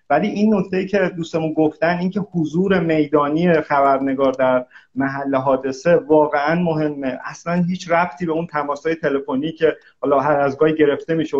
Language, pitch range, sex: Persian, 140-175 Hz, male